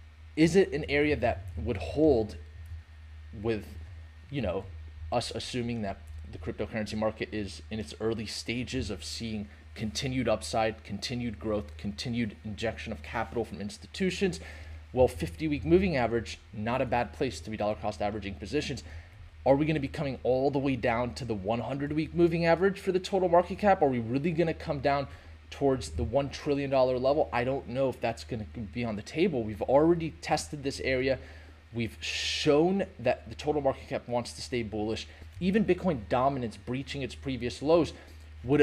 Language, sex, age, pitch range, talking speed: English, male, 30-49, 90-140 Hz, 180 wpm